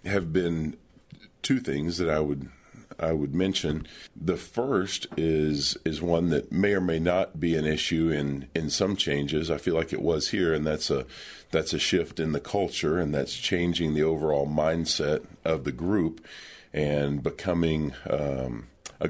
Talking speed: 175 wpm